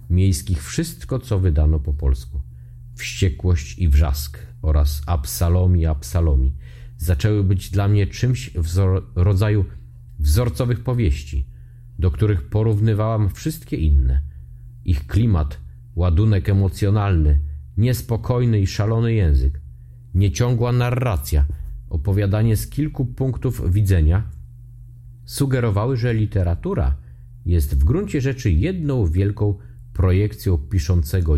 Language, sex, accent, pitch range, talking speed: Polish, male, native, 80-120 Hz, 100 wpm